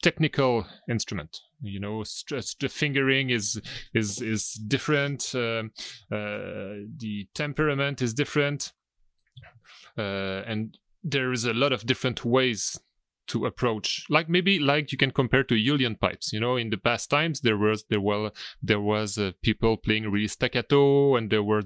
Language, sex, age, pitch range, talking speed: English, male, 30-49, 110-140 Hz, 160 wpm